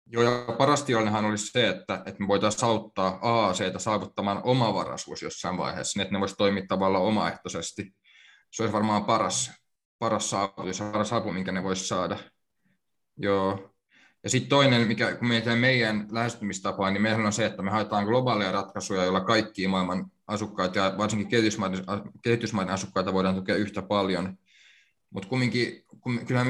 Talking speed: 155 wpm